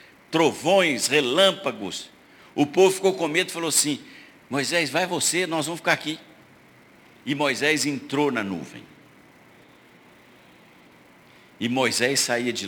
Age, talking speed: 60-79, 125 wpm